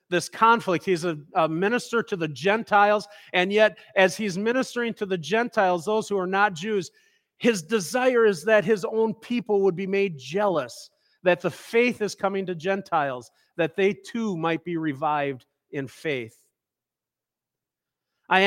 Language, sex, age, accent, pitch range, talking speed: English, male, 40-59, American, 180-230 Hz, 160 wpm